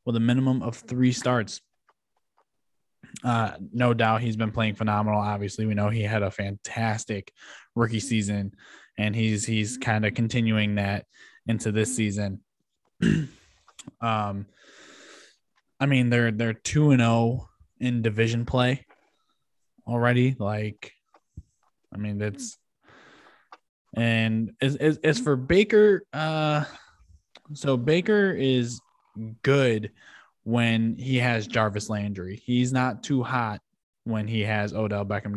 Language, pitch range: English, 105-125 Hz